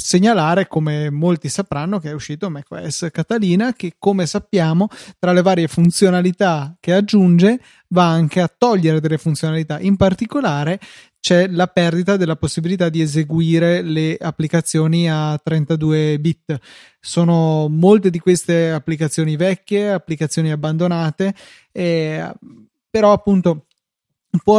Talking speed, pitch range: 125 wpm, 155-180 Hz